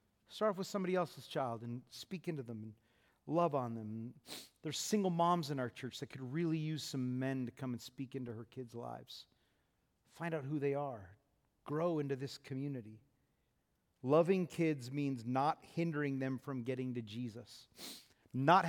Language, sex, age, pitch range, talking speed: English, male, 40-59, 125-160 Hz, 175 wpm